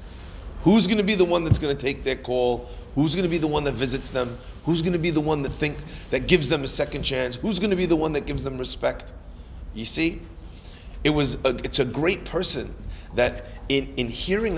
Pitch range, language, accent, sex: 115-165 Hz, English, American, male